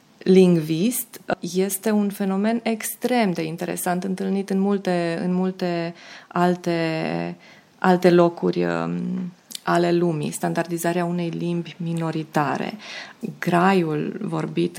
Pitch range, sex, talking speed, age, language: 170-200 Hz, female, 95 wpm, 20-39, Romanian